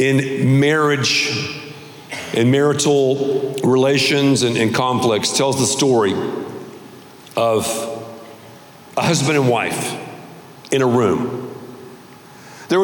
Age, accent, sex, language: 50-69, American, male, English